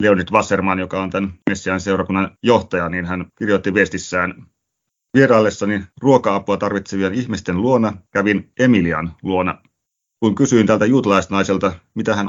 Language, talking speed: Finnish, 125 wpm